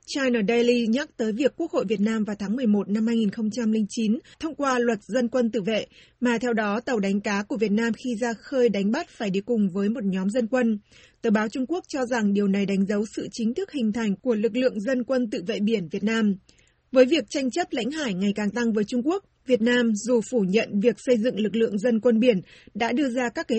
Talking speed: 250 wpm